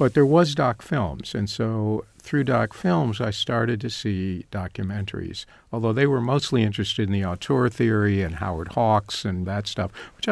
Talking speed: 180 wpm